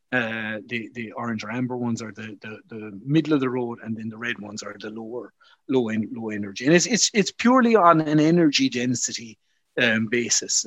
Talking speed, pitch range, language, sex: 215 wpm, 115-150 Hz, English, male